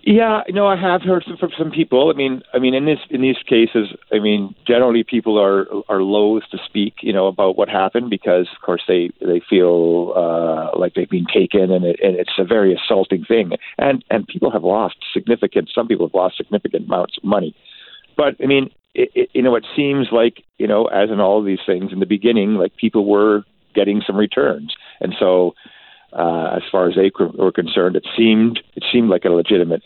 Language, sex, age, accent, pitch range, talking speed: English, male, 50-69, American, 90-120 Hz, 215 wpm